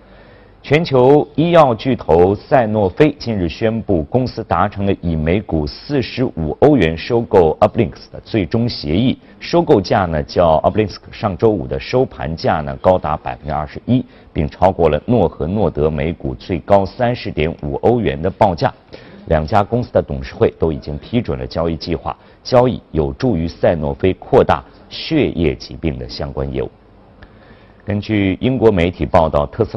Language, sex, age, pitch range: Chinese, male, 50-69, 75-110 Hz